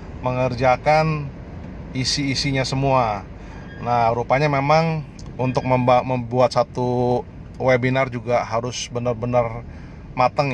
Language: Indonesian